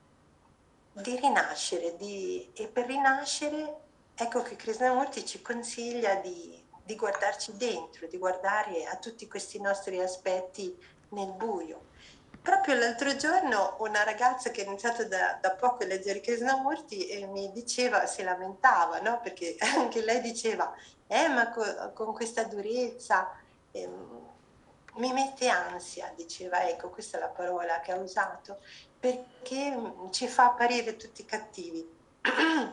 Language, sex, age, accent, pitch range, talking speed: Italian, female, 40-59, native, 195-255 Hz, 135 wpm